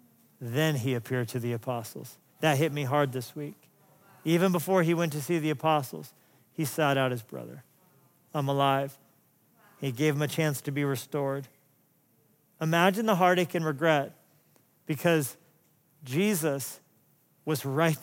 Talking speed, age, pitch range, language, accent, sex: 145 wpm, 40-59, 150-190 Hz, English, American, male